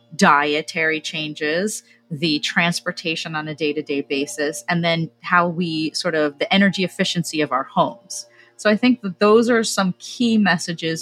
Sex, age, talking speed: female, 30-49, 170 wpm